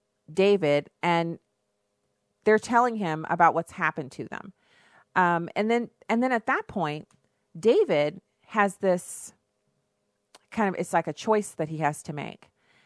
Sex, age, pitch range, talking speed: female, 30-49, 165-210 Hz, 150 wpm